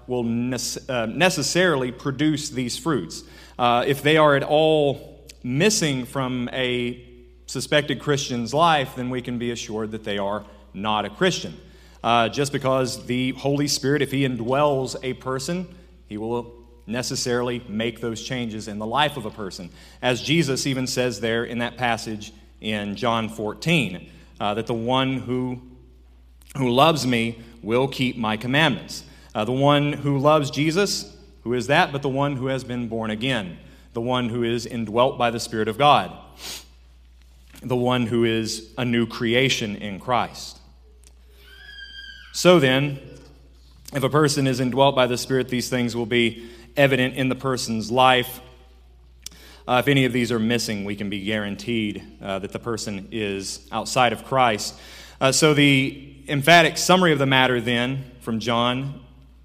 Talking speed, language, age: 160 wpm, English, 40-59